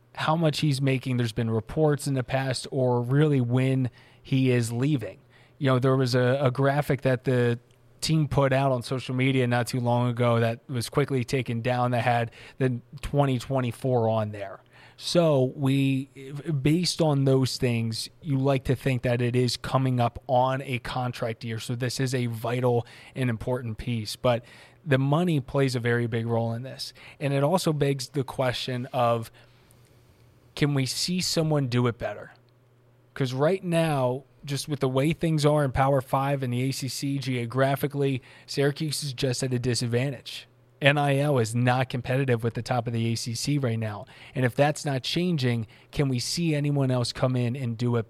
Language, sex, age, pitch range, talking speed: English, male, 20-39, 120-140 Hz, 180 wpm